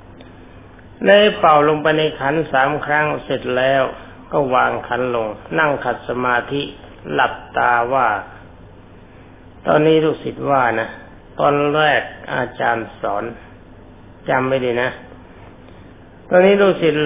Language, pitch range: Thai, 110-150 Hz